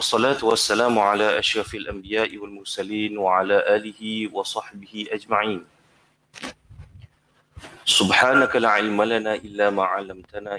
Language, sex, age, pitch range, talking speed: Malay, male, 30-49, 105-115 Hz, 100 wpm